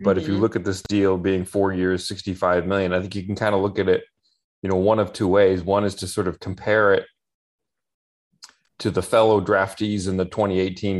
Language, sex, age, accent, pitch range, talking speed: English, male, 30-49, American, 90-105 Hz, 225 wpm